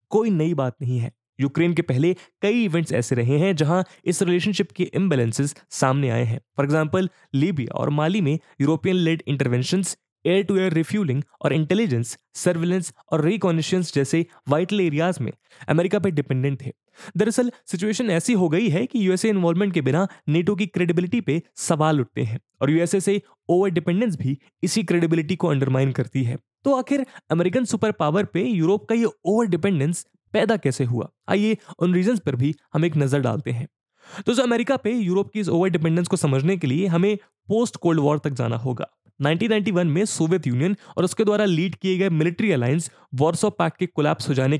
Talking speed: 120 wpm